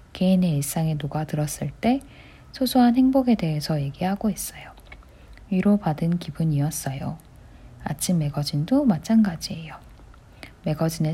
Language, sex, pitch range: Korean, female, 140-185 Hz